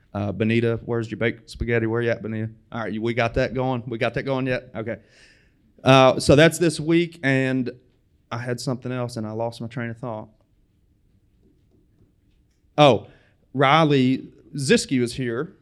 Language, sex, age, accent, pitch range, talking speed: English, male, 30-49, American, 110-135 Hz, 170 wpm